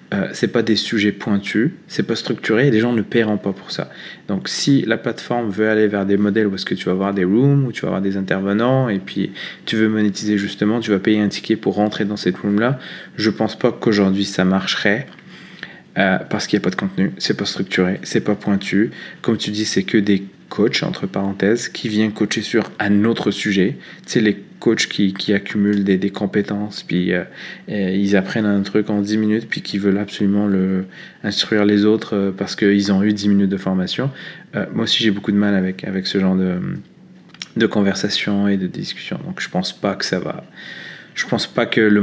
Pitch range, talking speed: 95-110 Hz, 230 wpm